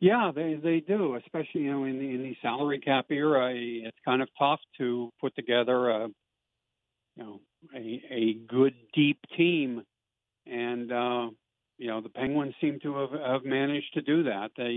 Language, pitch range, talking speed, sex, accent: English, 115-140 Hz, 180 wpm, male, American